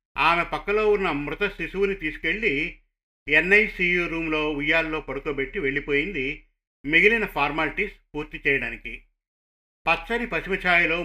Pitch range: 140-175 Hz